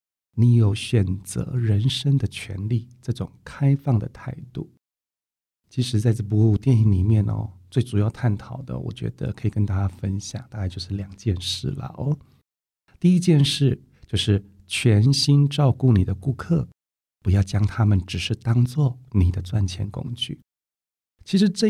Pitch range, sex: 95-125 Hz, male